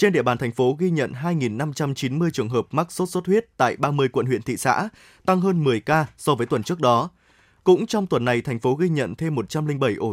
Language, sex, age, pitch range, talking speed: Vietnamese, male, 20-39, 130-180 Hz, 235 wpm